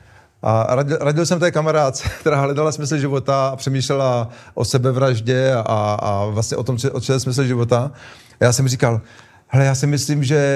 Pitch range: 125-155 Hz